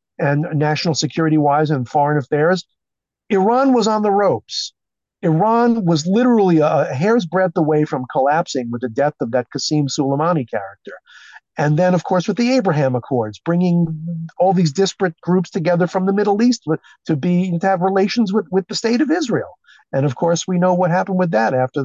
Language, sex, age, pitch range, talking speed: English, male, 50-69, 140-185 Hz, 190 wpm